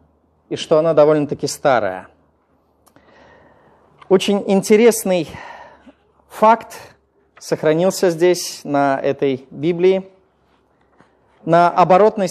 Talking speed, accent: 75 wpm, native